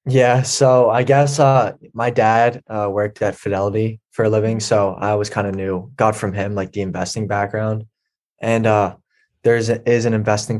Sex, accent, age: male, American, 20-39